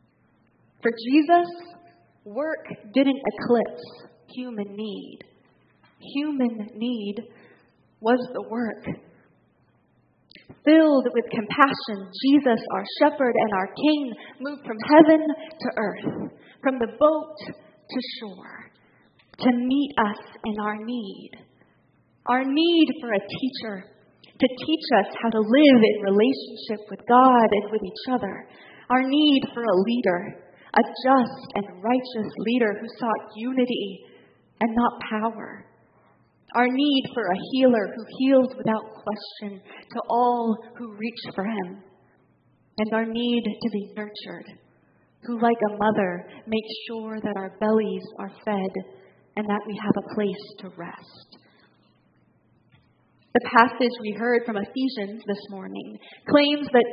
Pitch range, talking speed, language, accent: 210-255 Hz, 130 wpm, English, American